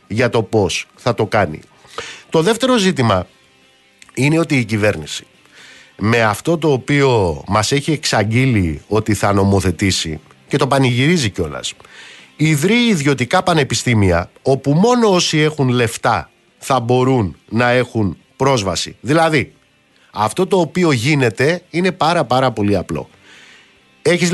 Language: Greek